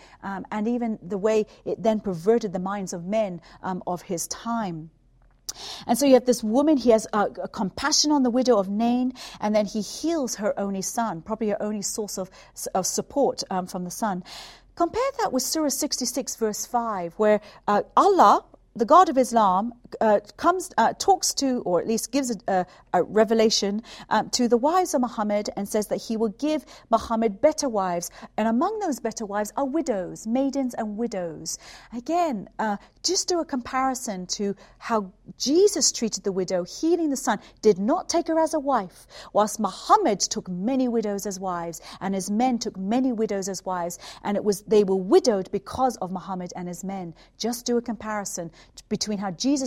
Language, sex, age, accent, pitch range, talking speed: English, female, 40-59, British, 195-260 Hz, 190 wpm